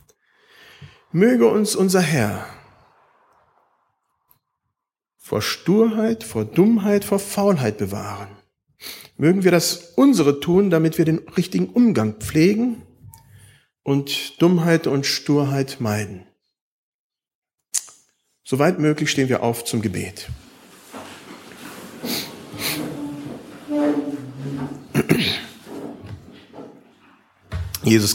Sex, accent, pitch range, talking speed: male, German, 120-160 Hz, 75 wpm